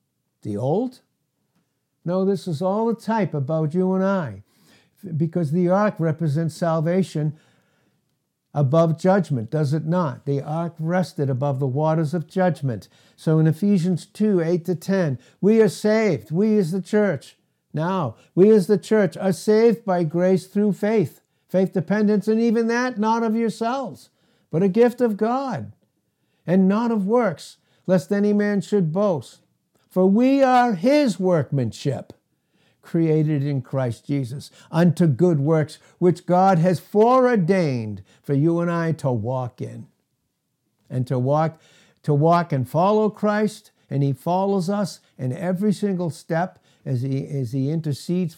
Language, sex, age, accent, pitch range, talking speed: English, male, 60-79, American, 145-195 Hz, 150 wpm